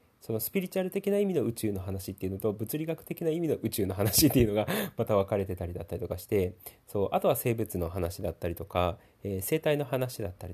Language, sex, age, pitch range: Japanese, male, 30-49, 90-125 Hz